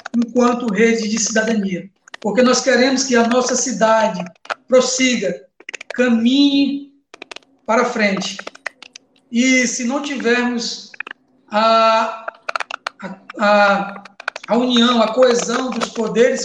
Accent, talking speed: Brazilian, 100 wpm